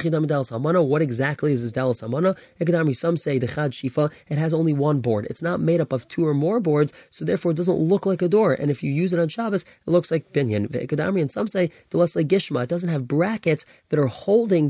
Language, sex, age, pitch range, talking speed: English, male, 20-39, 140-175 Hz, 200 wpm